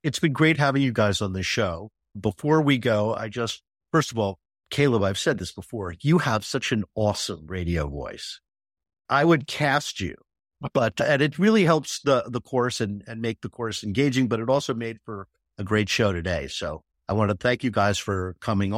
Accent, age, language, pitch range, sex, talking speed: American, 50-69, English, 105-130 Hz, male, 210 wpm